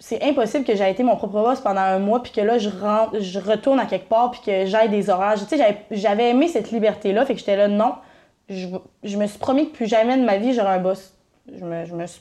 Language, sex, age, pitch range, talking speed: French, female, 20-39, 195-240 Hz, 280 wpm